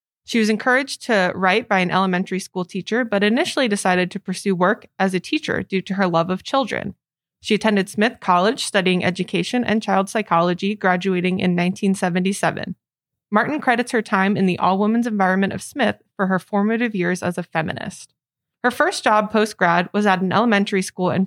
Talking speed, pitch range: 180 wpm, 180-220 Hz